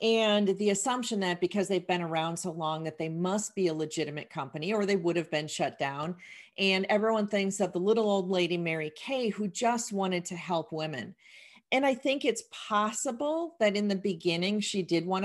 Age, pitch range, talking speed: 40-59, 170-215 Hz, 205 wpm